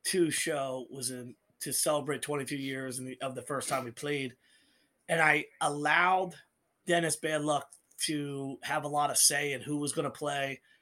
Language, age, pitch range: English, 30-49, 135-155 Hz